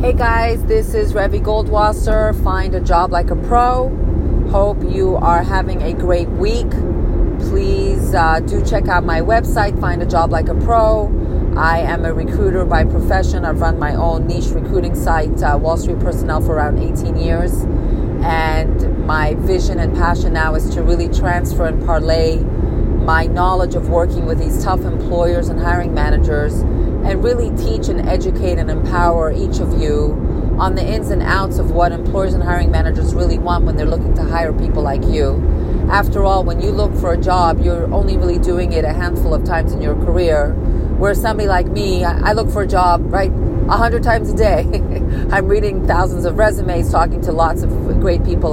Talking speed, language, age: 190 wpm, English, 40-59